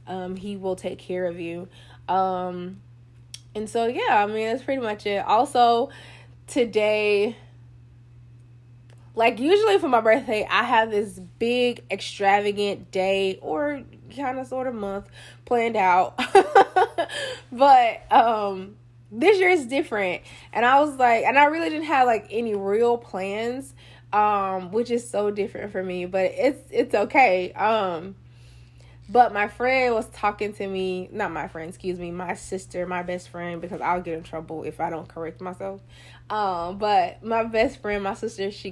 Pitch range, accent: 180-260 Hz, American